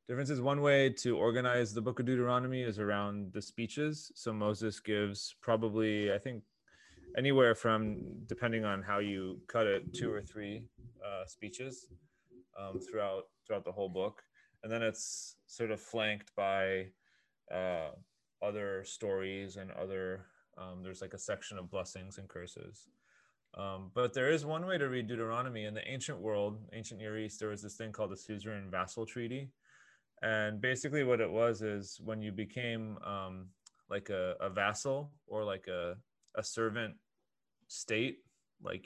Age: 20-39